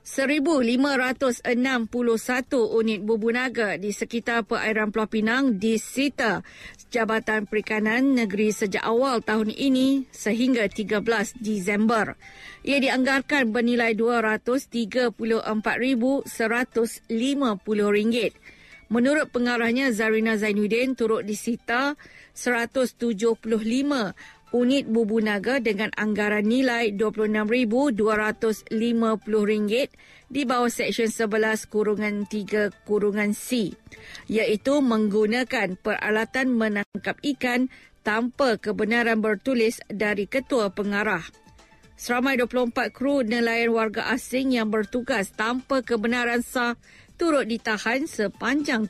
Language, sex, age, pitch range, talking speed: Malay, female, 50-69, 215-250 Hz, 85 wpm